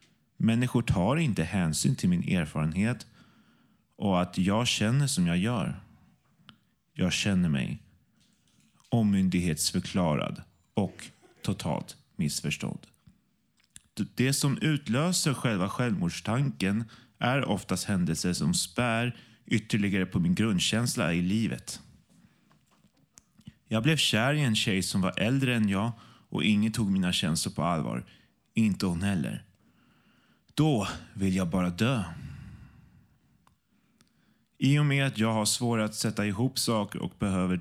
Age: 30-49